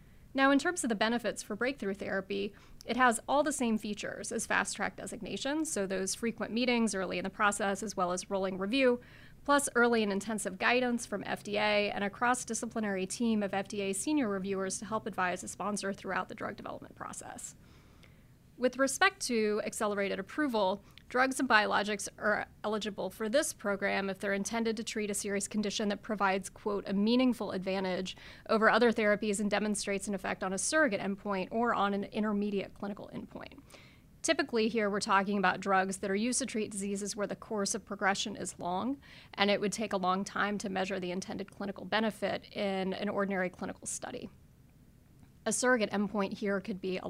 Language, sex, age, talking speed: English, female, 30-49, 185 wpm